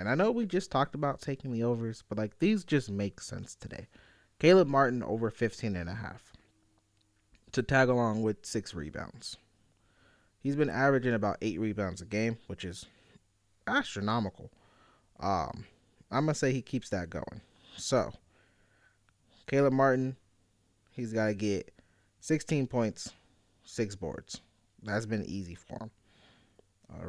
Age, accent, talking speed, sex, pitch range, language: 20-39, American, 145 wpm, male, 100-120 Hz, English